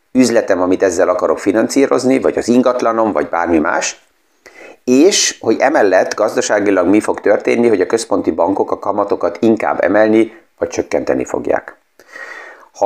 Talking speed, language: 140 wpm, Hungarian